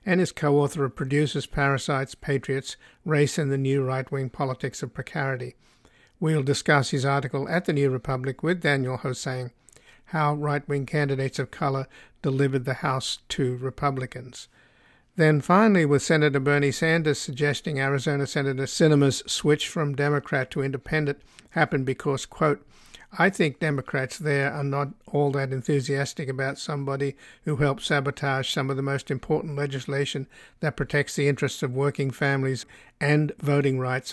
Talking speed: 150 wpm